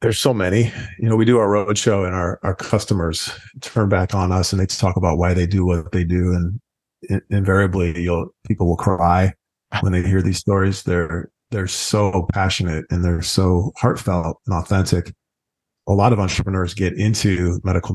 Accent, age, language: American, 40-59, English